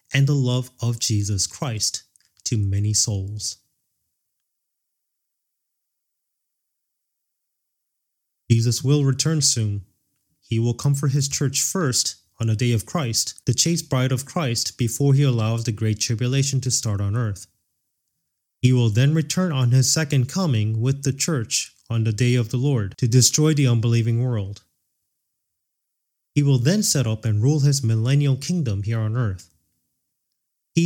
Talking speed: 145 wpm